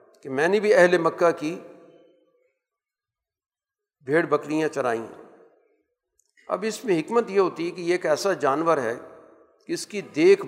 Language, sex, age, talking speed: Urdu, male, 50-69, 155 wpm